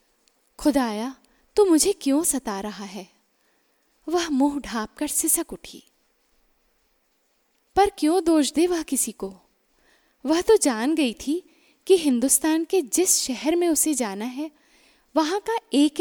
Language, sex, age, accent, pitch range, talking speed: Hindi, female, 10-29, native, 255-335 Hz, 140 wpm